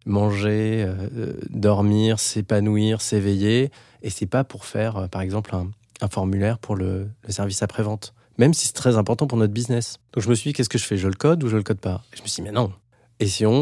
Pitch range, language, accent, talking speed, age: 100-120 Hz, French, French, 240 wpm, 20-39